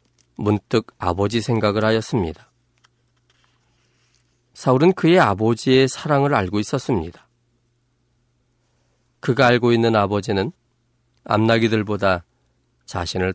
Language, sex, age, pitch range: Korean, male, 40-59, 100-125 Hz